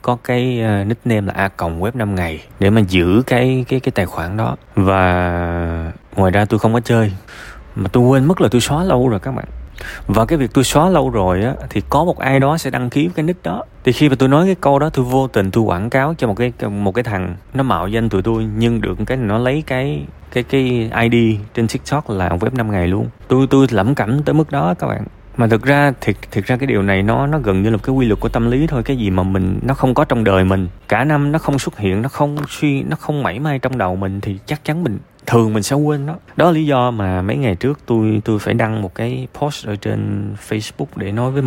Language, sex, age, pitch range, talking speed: Vietnamese, male, 20-39, 100-135 Hz, 265 wpm